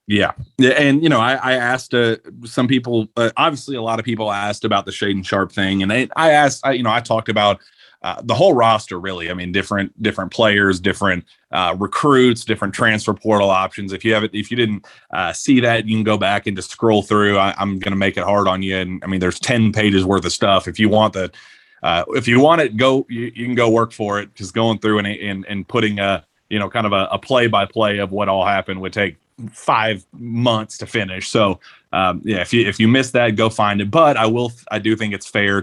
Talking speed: 250 wpm